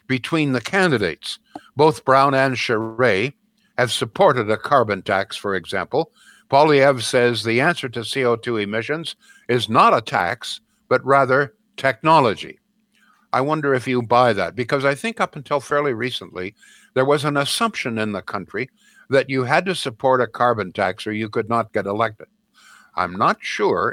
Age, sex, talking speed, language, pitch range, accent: 60-79, male, 165 wpm, English, 120-160 Hz, American